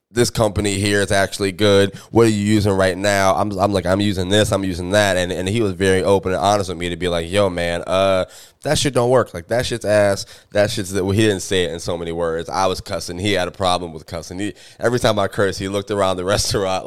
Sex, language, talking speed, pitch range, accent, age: male, English, 265 wpm, 90-105 Hz, American, 20-39